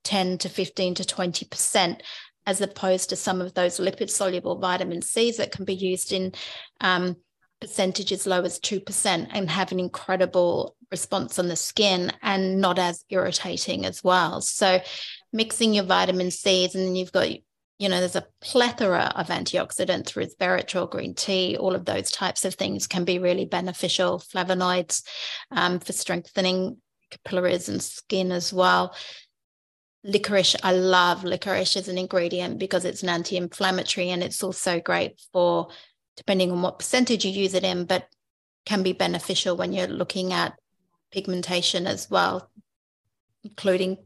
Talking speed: 155 wpm